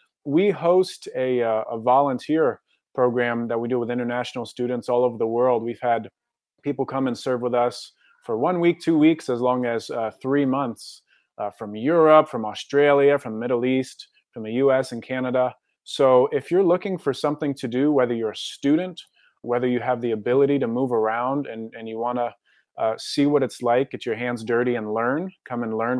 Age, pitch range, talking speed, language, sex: 30-49, 115-135 Hz, 205 wpm, English, male